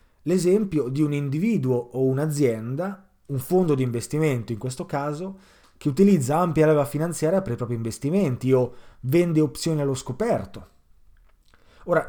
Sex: male